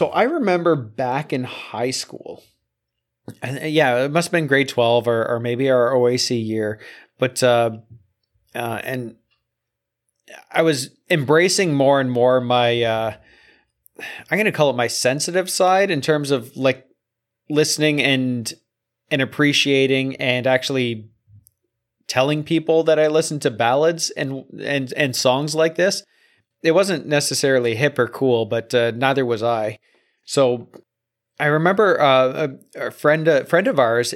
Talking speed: 150 wpm